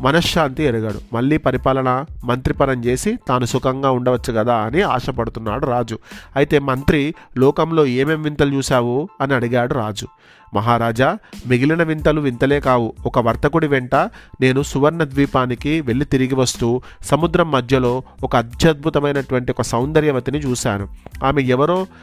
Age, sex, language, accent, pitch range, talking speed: 30-49, male, Telugu, native, 120-145 Hz, 125 wpm